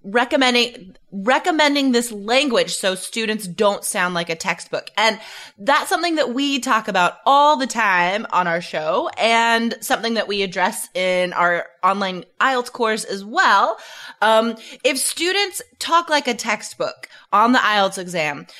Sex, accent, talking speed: female, American, 150 wpm